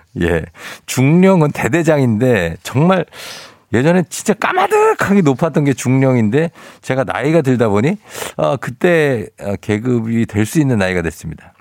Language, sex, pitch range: Korean, male, 105-150 Hz